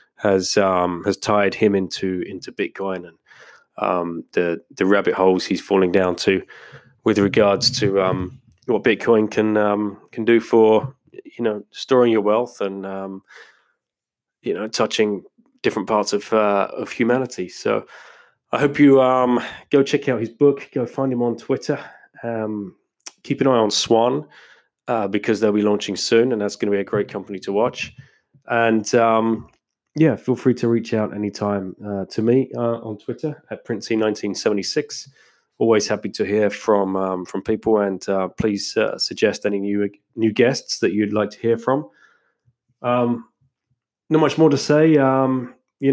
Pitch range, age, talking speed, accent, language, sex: 100-130 Hz, 20-39, 170 wpm, British, English, male